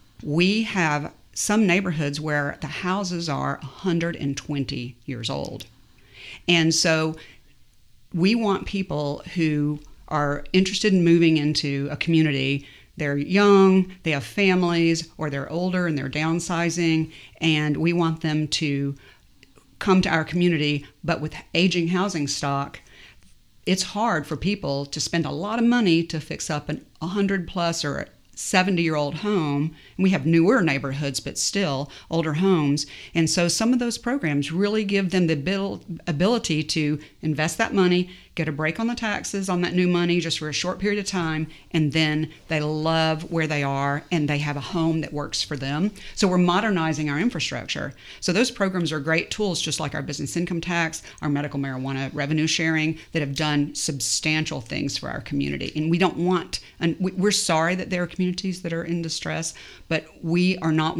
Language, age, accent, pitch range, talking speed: English, 50-69, American, 145-180 Hz, 170 wpm